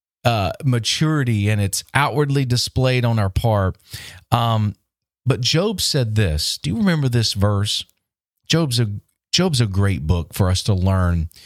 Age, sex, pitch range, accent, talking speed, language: 40-59, male, 95-125 Hz, American, 150 wpm, English